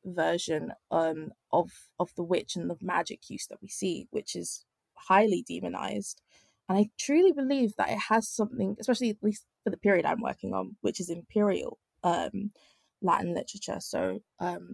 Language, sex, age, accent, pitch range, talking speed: English, female, 20-39, British, 180-215 Hz, 170 wpm